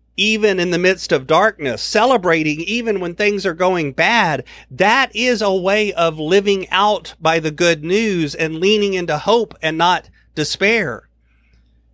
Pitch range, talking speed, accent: 155-215 Hz, 155 wpm, American